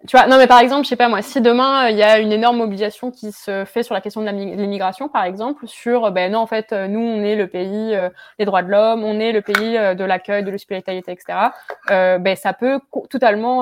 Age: 20-39